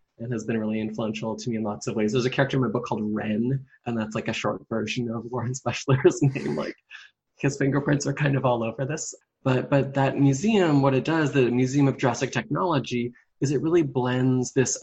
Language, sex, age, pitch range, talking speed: English, male, 20-39, 115-135 Hz, 225 wpm